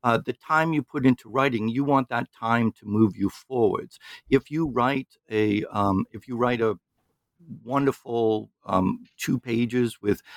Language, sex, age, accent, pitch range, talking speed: English, male, 60-79, American, 105-130 Hz, 170 wpm